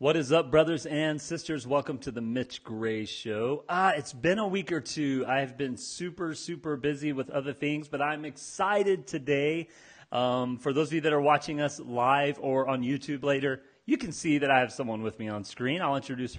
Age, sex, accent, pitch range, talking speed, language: 30-49, male, American, 130-165 Hz, 210 wpm, English